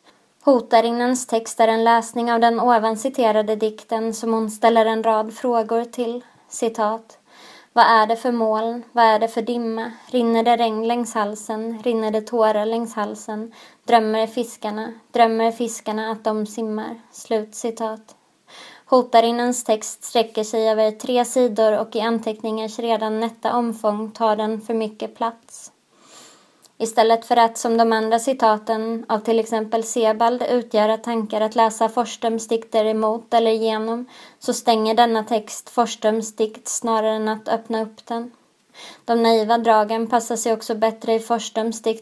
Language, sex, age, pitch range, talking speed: Swedish, female, 20-39, 220-235 Hz, 145 wpm